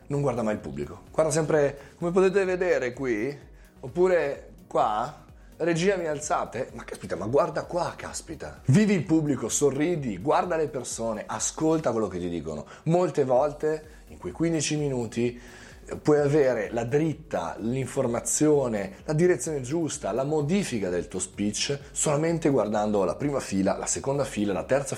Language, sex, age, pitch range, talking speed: Italian, male, 30-49, 105-150 Hz, 150 wpm